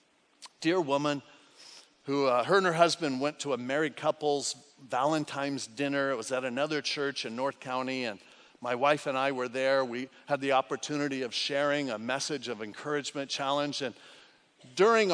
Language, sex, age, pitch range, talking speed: English, male, 50-69, 140-195 Hz, 170 wpm